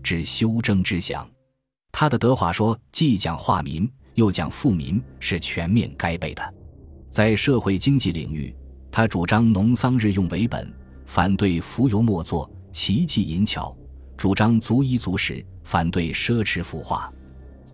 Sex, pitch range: male, 80-115 Hz